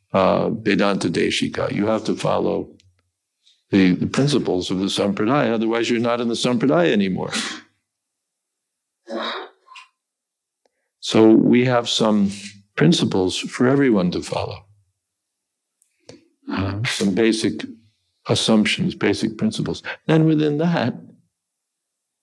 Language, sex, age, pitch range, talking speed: English, male, 60-79, 95-115 Hz, 105 wpm